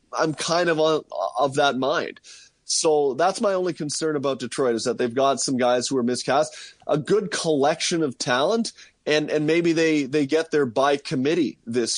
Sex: male